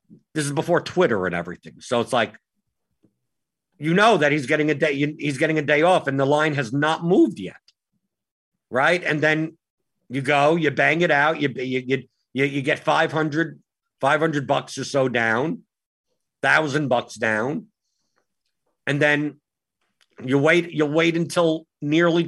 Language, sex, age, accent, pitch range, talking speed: English, male, 50-69, American, 125-160 Hz, 160 wpm